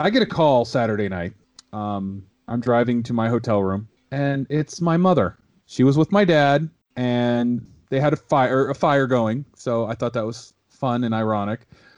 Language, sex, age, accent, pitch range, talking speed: English, male, 30-49, American, 110-150 Hz, 185 wpm